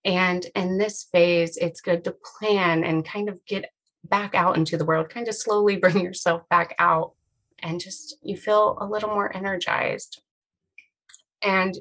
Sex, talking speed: female, 170 wpm